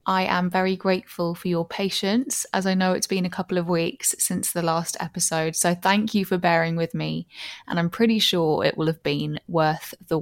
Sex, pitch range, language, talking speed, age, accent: female, 170-200 Hz, English, 215 wpm, 20-39, British